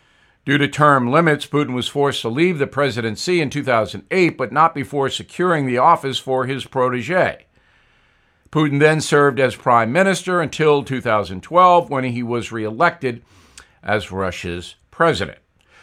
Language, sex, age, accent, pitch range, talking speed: English, male, 50-69, American, 125-165 Hz, 140 wpm